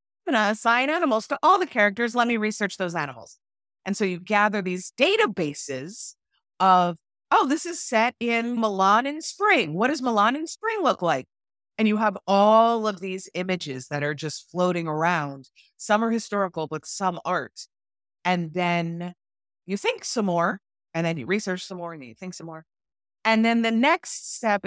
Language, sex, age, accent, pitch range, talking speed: English, female, 30-49, American, 160-220 Hz, 180 wpm